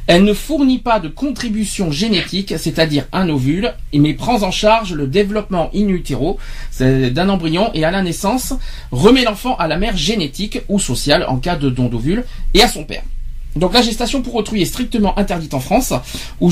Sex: male